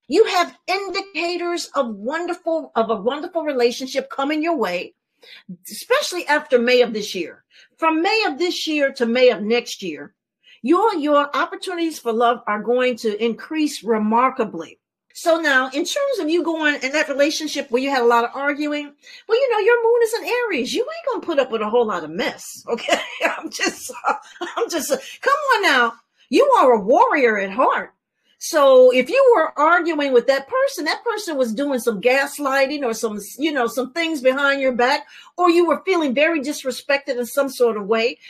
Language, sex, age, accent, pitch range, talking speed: English, female, 40-59, American, 245-340 Hz, 195 wpm